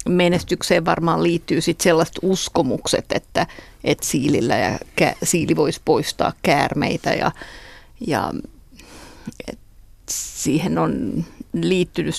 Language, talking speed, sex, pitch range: Finnish, 95 wpm, female, 170-190 Hz